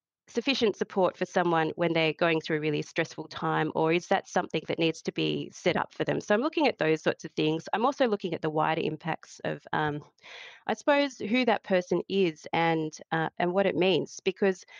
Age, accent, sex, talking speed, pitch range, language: 30-49, Australian, female, 220 wpm, 155-200 Hz, English